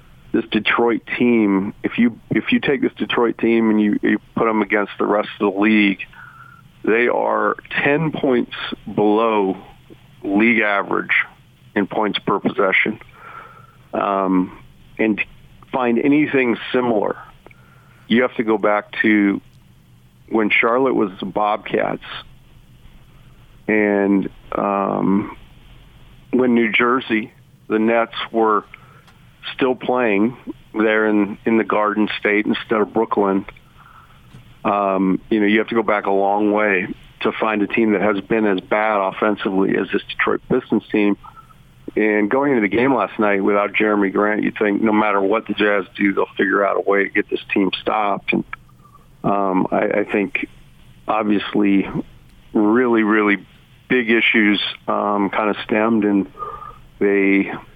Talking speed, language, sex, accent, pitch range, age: 145 wpm, English, male, American, 100-115 Hz, 50-69